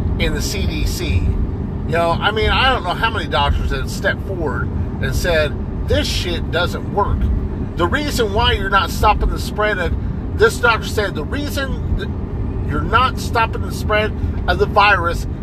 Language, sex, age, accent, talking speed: English, male, 50-69, American, 180 wpm